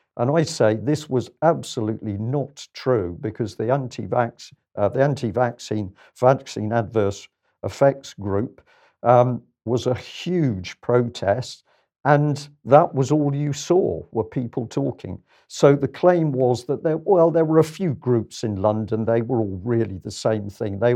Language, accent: English, British